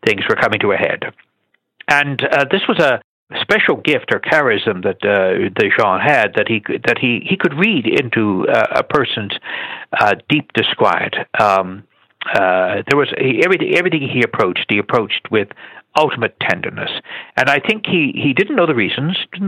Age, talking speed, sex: 60-79, 180 wpm, male